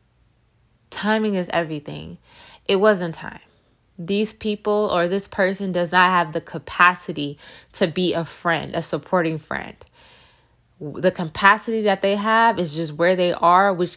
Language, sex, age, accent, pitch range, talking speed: English, female, 20-39, American, 165-210 Hz, 145 wpm